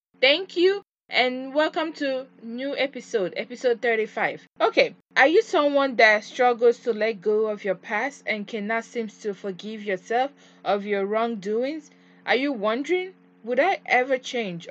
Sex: female